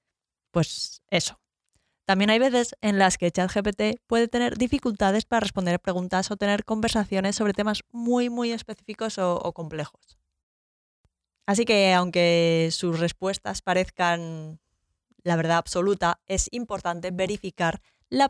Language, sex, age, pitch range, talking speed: Spanish, female, 20-39, 165-215 Hz, 130 wpm